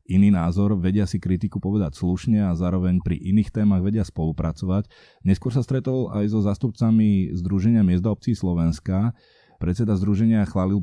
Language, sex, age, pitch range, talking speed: Slovak, male, 20-39, 90-110 Hz, 150 wpm